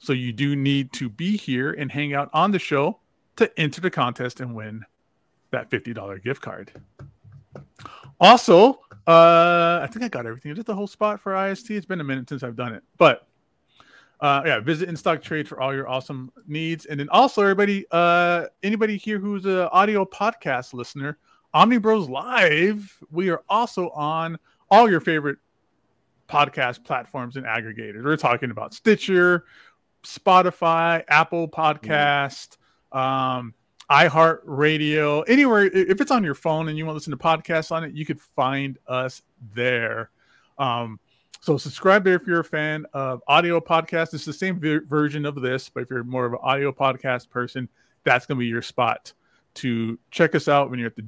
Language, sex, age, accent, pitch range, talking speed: English, male, 30-49, American, 130-170 Hz, 180 wpm